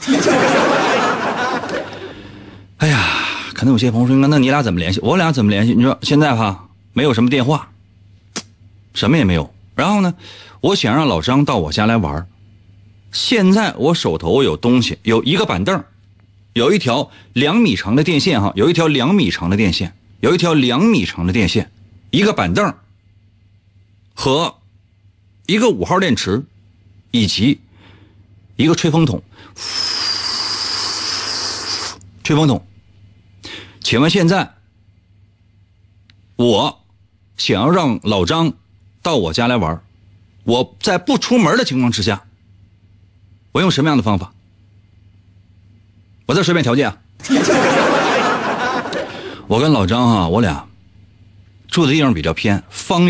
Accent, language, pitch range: native, Chinese, 100-120 Hz